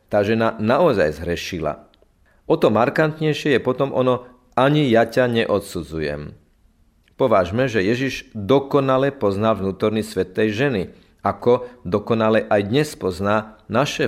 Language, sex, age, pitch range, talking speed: Slovak, male, 40-59, 95-125 Hz, 120 wpm